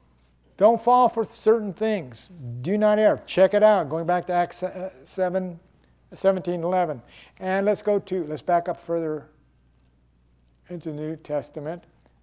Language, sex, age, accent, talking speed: English, male, 60-79, American, 145 wpm